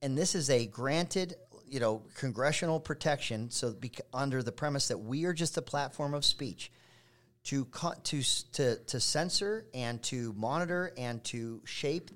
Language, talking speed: English, 170 wpm